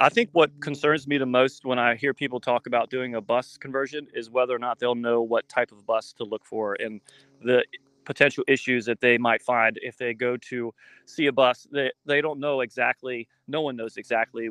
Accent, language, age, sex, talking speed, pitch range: American, English, 30-49, male, 225 wpm, 120-135 Hz